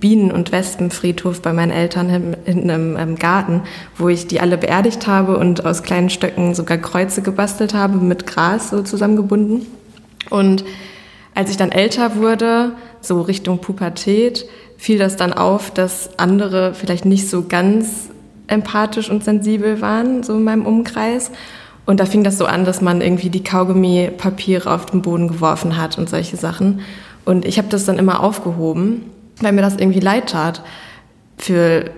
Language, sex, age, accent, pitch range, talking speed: German, female, 20-39, German, 180-210 Hz, 165 wpm